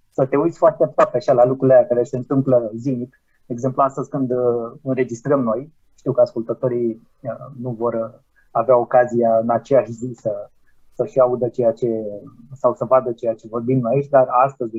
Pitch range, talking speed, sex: 125-150 Hz, 175 wpm, male